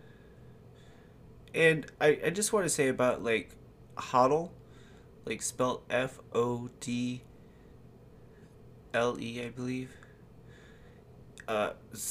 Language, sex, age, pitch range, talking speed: English, male, 20-39, 110-135 Hz, 80 wpm